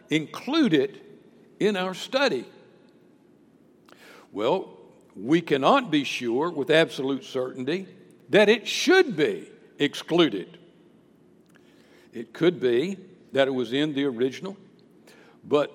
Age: 60-79